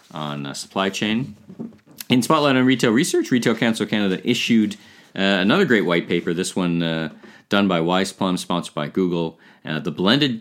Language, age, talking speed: English, 40-59, 180 wpm